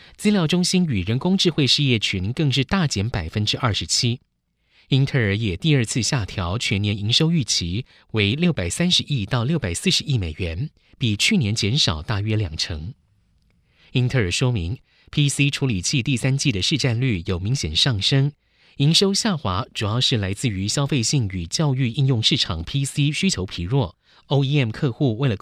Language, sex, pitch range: Chinese, male, 105-145 Hz